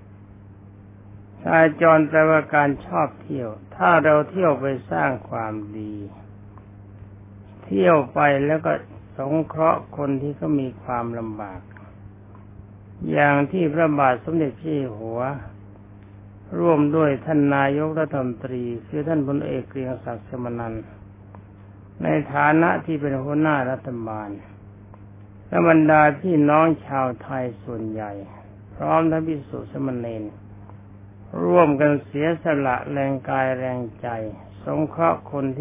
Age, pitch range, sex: 60-79, 100-145 Hz, male